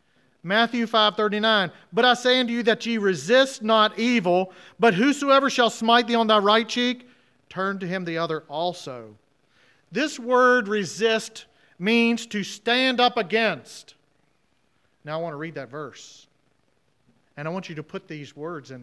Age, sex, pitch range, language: 40-59, male, 145-210 Hz, English